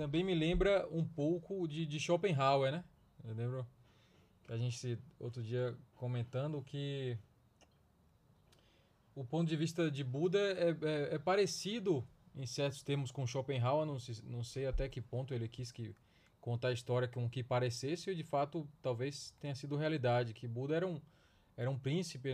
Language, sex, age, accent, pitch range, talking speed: Portuguese, male, 20-39, Brazilian, 120-160 Hz, 170 wpm